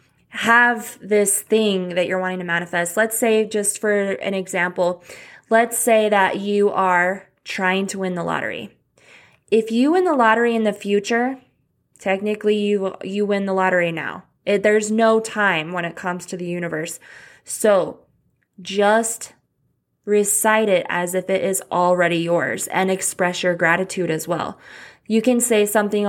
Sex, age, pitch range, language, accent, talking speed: female, 20-39, 180-215 Hz, English, American, 155 wpm